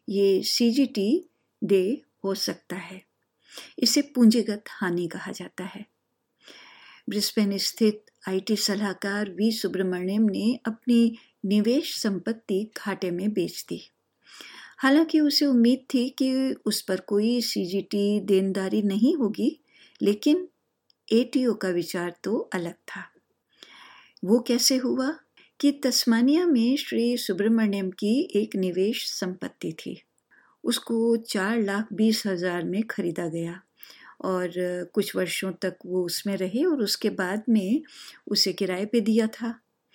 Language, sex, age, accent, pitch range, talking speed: Hindi, female, 50-69, native, 195-250 Hz, 130 wpm